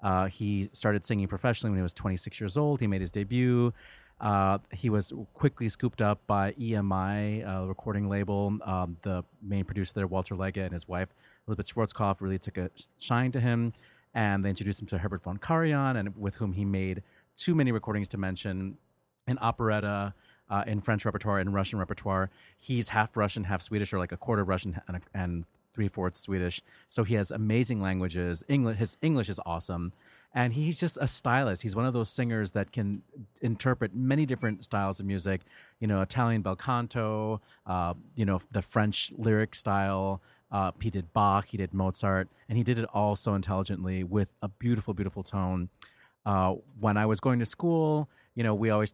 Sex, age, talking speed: male, 30-49, 190 wpm